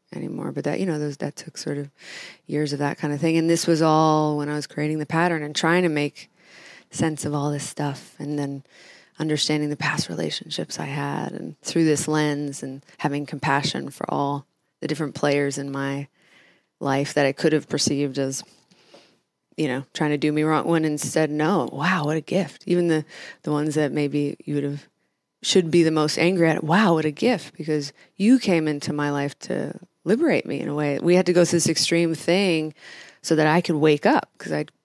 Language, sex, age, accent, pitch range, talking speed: English, female, 20-39, American, 145-170 Hz, 215 wpm